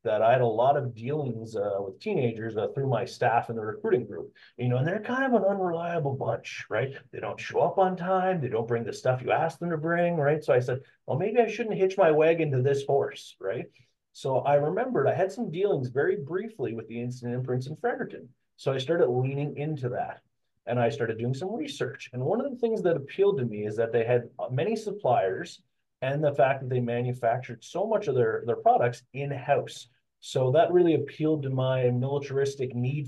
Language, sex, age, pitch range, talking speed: English, male, 30-49, 120-160 Hz, 220 wpm